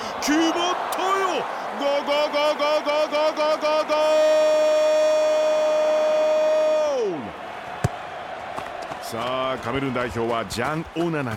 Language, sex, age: Japanese, male, 40-59